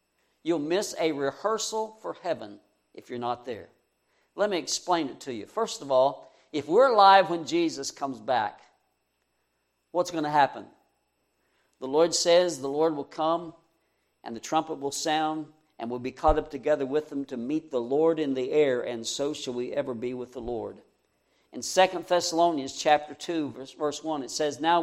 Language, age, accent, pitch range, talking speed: English, 60-79, American, 130-175 Hz, 185 wpm